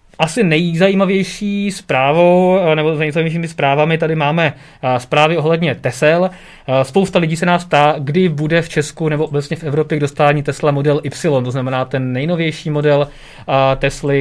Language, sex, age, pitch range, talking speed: Czech, male, 20-39, 135-160 Hz, 155 wpm